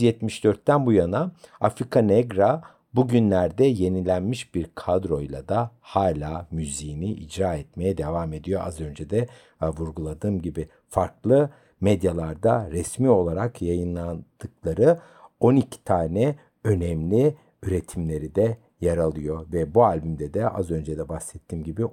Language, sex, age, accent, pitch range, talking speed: Turkish, male, 60-79, native, 85-115 Hz, 115 wpm